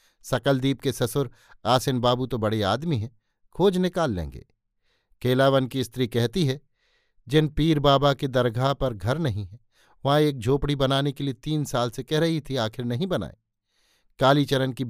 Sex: male